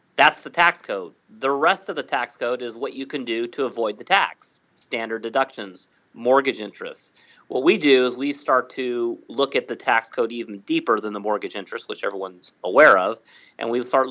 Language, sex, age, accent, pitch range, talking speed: English, male, 40-59, American, 115-130 Hz, 205 wpm